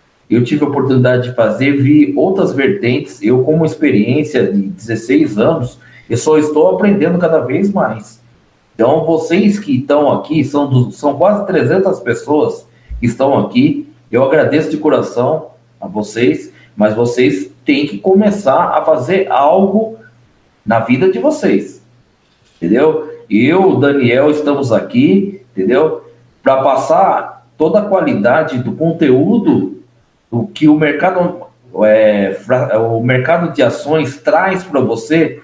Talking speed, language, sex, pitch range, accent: 135 wpm, Portuguese, male, 135-195 Hz, Brazilian